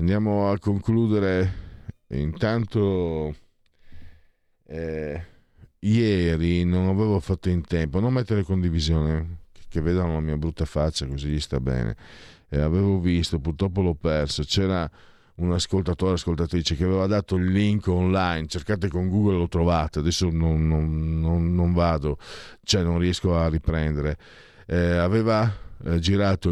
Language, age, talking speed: Italian, 50-69, 130 wpm